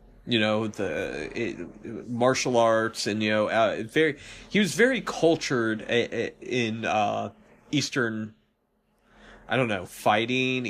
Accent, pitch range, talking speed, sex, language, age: American, 110-130 Hz, 135 wpm, male, English, 30-49